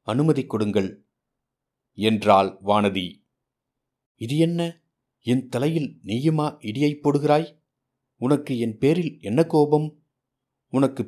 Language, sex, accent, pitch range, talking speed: Tamil, male, native, 110-135 Hz, 90 wpm